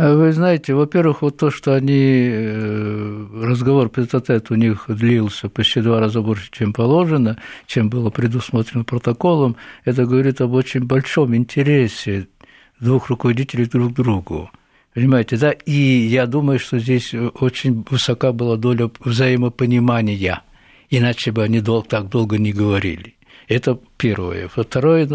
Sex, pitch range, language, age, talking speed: male, 105-130 Hz, Russian, 60-79, 130 wpm